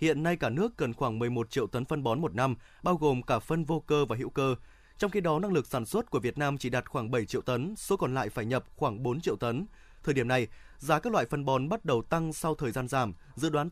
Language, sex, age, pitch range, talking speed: Vietnamese, male, 20-39, 130-165 Hz, 280 wpm